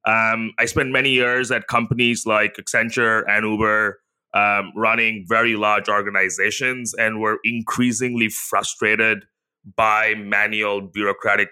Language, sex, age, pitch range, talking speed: English, male, 30-49, 105-120 Hz, 120 wpm